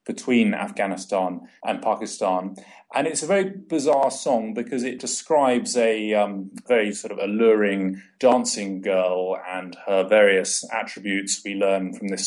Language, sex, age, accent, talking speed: English, male, 30-49, British, 140 wpm